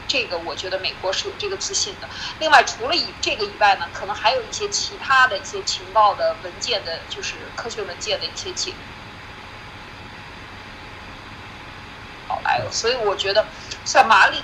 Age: 20-39